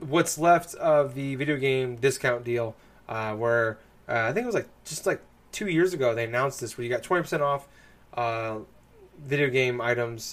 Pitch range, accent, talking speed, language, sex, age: 120-155 Hz, American, 190 wpm, English, male, 20-39